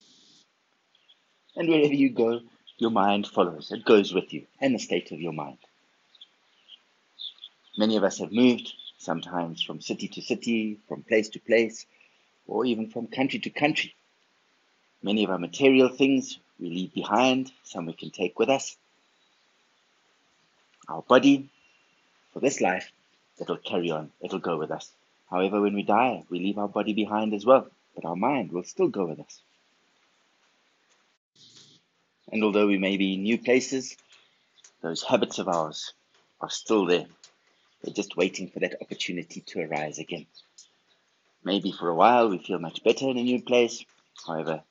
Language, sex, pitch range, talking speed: English, male, 85-120 Hz, 160 wpm